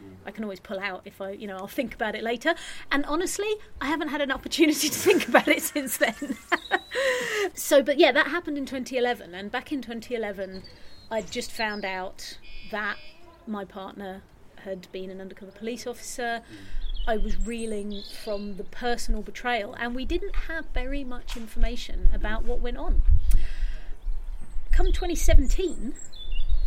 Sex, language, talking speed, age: female, English, 160 wpm, 30-49